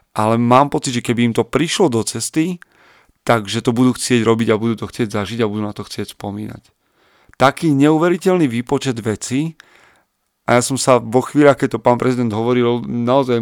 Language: Slovak